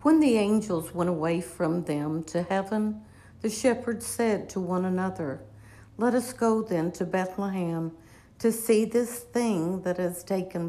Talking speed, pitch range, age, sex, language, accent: 155 wpm, 165-210 Hz, 60-79, female, English, American